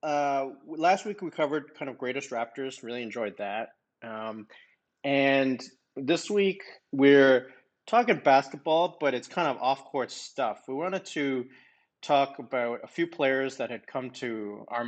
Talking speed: 160 wpm